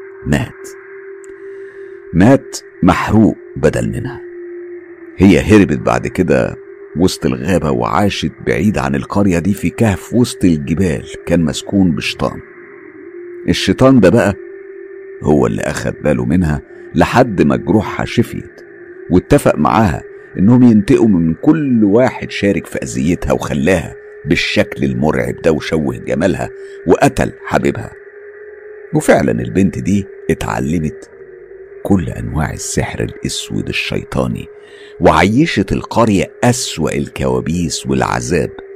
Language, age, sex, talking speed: Arabic, 50-69, male, 105 wpm